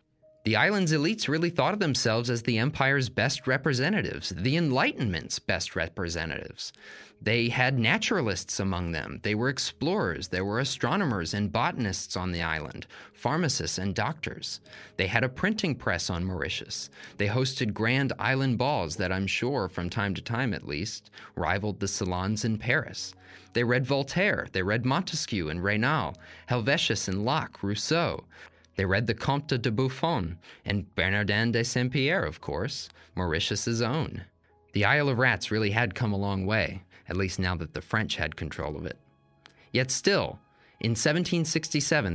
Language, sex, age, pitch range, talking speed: English, male, 20-39, 95-130 Hz, 160 wpm